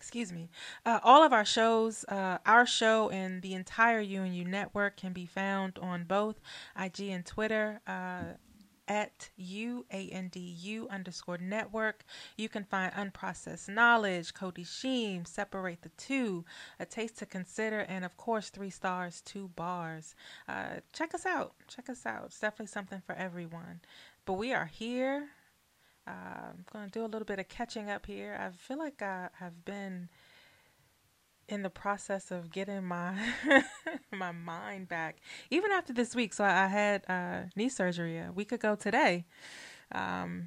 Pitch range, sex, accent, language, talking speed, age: 180-220 Hz, female, American, English, 155 wpm, 20-39